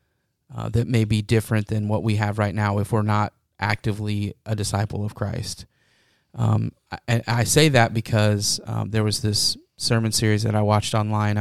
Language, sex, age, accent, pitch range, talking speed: English, male, 30-49, American, 105-120 Hz, 185 wpm